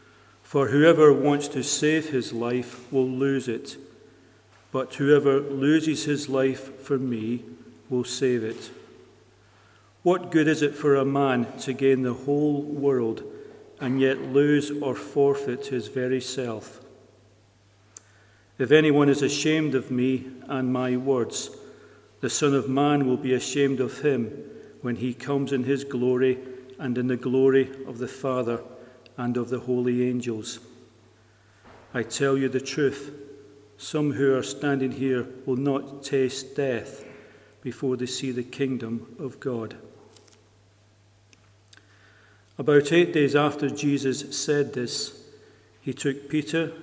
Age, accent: 40-59, British